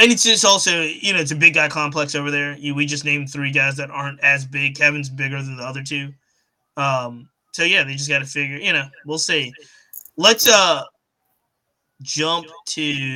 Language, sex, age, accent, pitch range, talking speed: English, male, 20-39, American, 145-165 Hz, 200 wpm